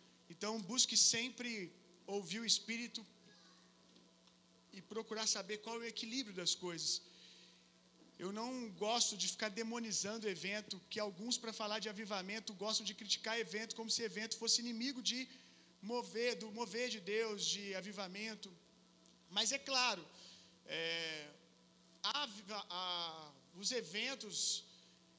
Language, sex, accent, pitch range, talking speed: Gujarati, male, Brazilian, 200-235 Hz, 125 wpm